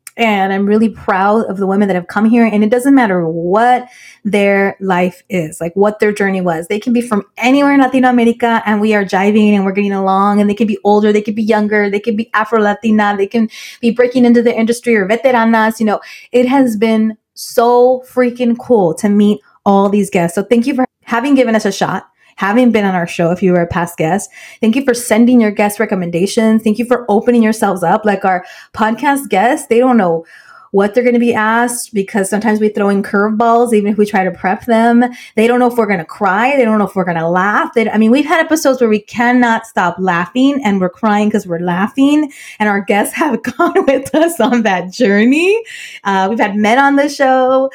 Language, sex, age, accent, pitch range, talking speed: English, female, 20-39, American, 190-240 Hz, 230 wpm